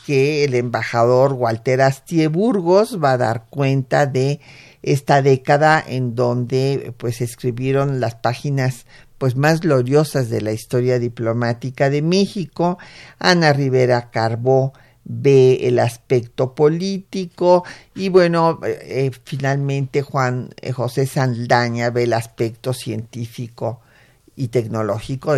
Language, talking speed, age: Spanish, 115 wpm, 50-69